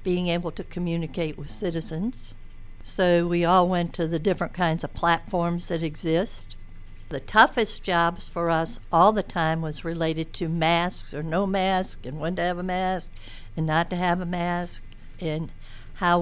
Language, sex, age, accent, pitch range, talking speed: English, female, 60-79, American, 145-175 Hz, 175 wpm